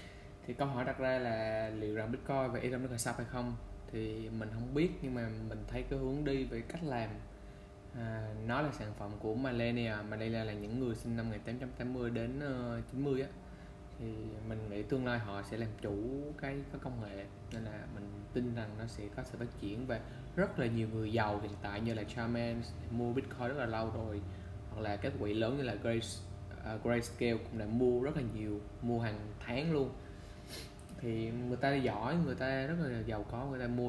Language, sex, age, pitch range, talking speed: English, male, 20-39, 105-130 Hz, 220 wpm